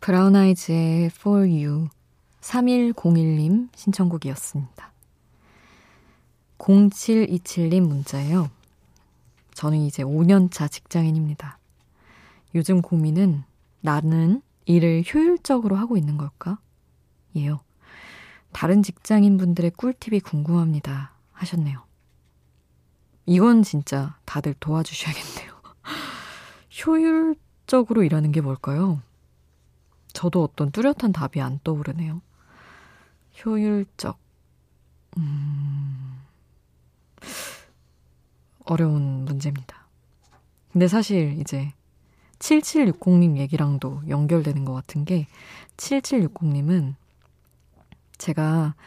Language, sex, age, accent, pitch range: Korean, female, 20-39, native, 135-185 Hz